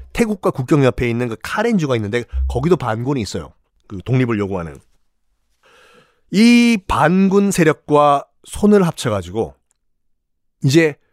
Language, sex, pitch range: Korean, male, 125-185 Hz